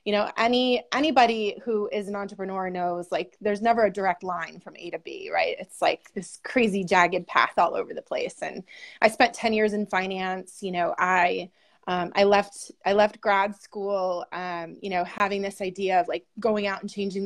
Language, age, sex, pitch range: English, 20-39, female, 185-225 Hz